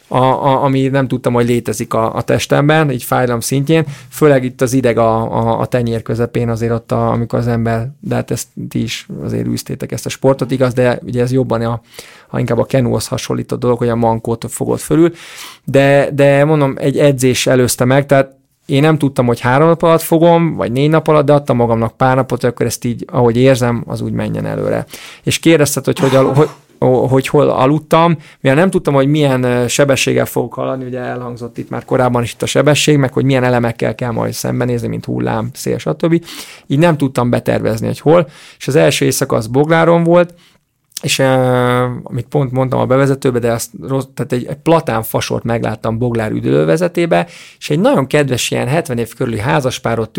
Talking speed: 195 wpm